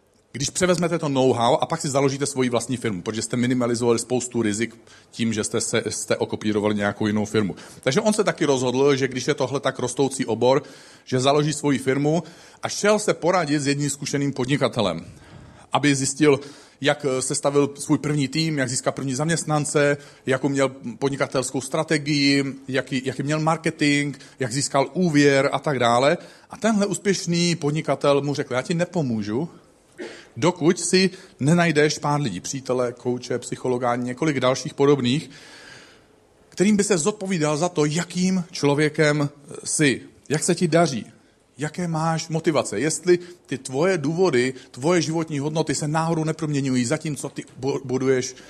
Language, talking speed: Czech, 155 wpm